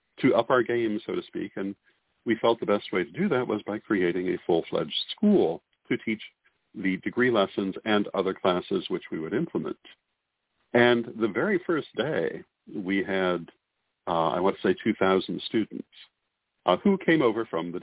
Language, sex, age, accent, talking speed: English, male, 50-69, American, 180 wpm